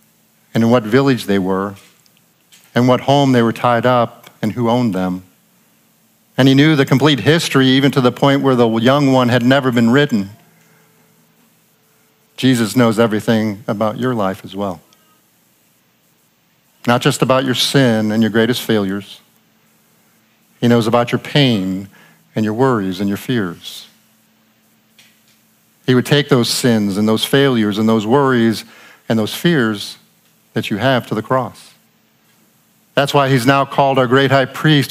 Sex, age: male, 50-69